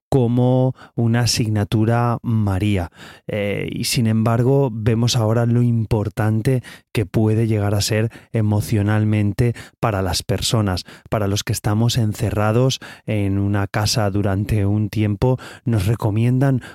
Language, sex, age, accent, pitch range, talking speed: Spanish, male, 30-49, Spanish, 100-120 Hz, 120 wpm